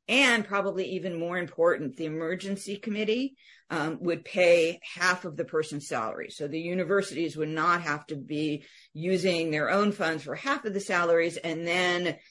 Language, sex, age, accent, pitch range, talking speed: English, female, 50-69, American, 145-175 Hz, 170 wpm